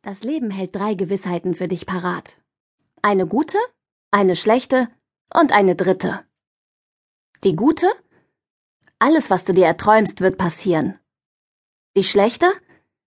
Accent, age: German, 30-49